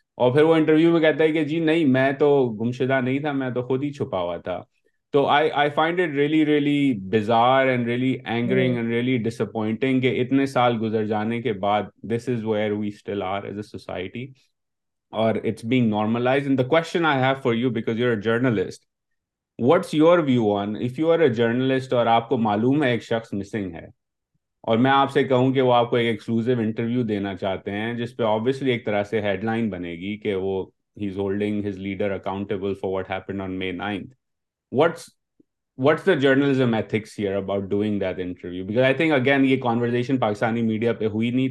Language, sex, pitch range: Urdu, male, 105-130 Hz